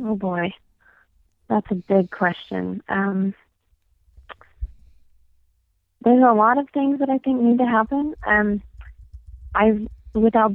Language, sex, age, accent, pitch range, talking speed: English, female, 30-49, American, 165-200 Hz, 120 wpm